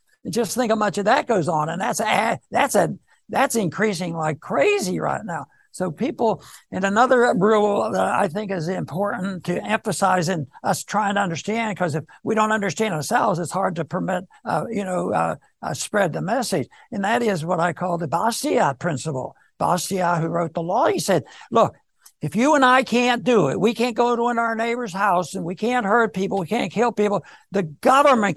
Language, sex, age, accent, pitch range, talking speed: English, male, 60-79, American, 180-225 Hz, 205 wpm